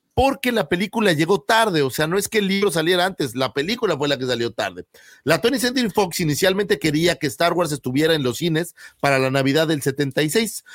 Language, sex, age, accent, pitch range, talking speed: Spanish, male, 40-59, Mexican, 135-185 Hz, 220 wpm